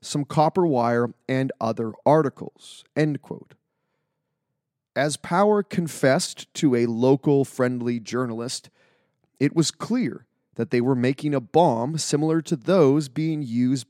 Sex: male